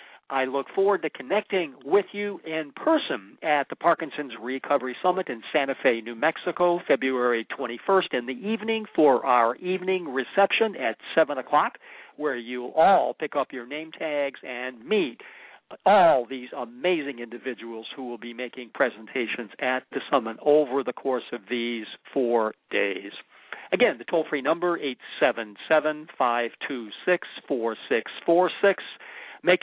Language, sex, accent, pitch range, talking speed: English, male, American, 125-180 Hz, 135 wpm